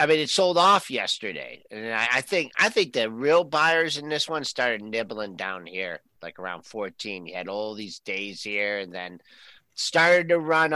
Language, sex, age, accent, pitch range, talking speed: English, male, 50-69, American, 115-165 Hz, 200 wpm